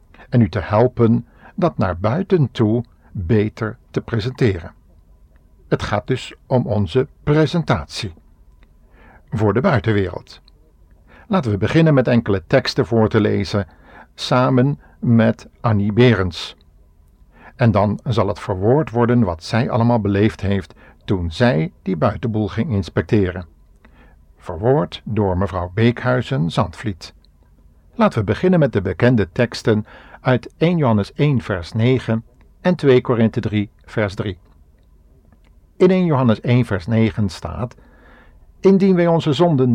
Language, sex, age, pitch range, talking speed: Dutch, male, 60-79, 90-130 Hz, 125 wpm